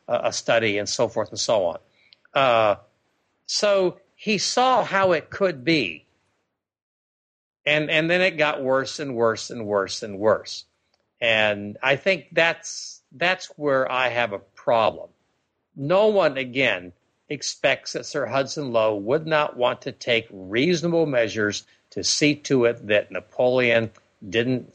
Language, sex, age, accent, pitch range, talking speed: English, male, 60-79, American, 110-165 Hz, 145 wpm